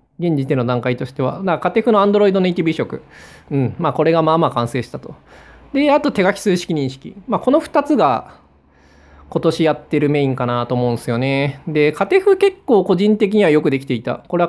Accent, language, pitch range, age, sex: native, Japanese, 125-200 Hz, 20-39, male